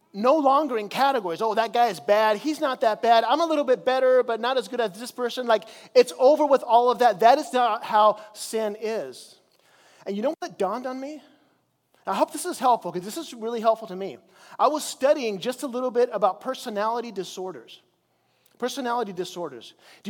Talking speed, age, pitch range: 210 wpm, 30-49, 195-255 Hz